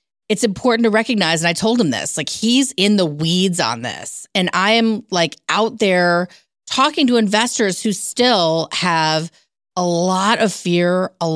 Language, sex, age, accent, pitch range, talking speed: English, female, 40-59, American, 165-215 Hz, 175 wpm